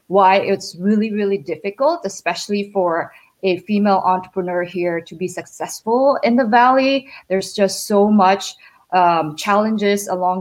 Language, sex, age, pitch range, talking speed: English, female, 20-39, 175-205 Hz, 140 wpm